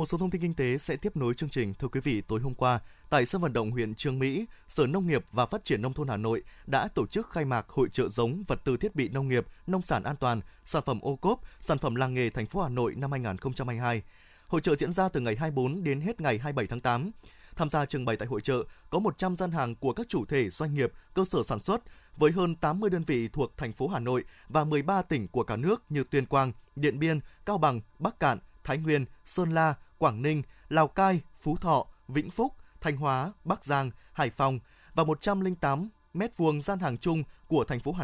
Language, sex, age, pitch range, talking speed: Vietnamese, male, 20-39, 130-170 Hz, 245 wpm